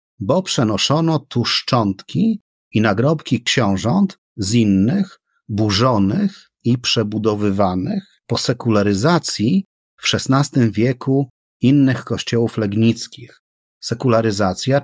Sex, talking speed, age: male, 85 wpm, 40-59